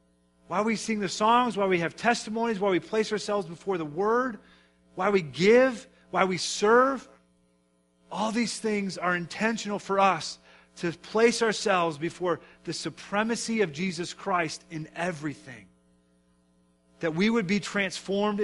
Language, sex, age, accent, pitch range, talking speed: English, male, 40-59, American, 155-210 Hz, 145 wpm